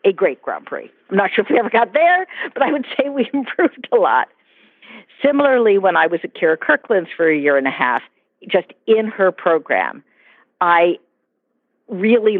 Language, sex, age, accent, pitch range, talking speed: English, female, 50-69, American, 160-240 Hz, 190 wpm